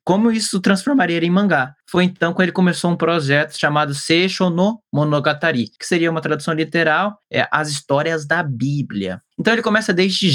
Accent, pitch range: Brazilian, 140-190 Hz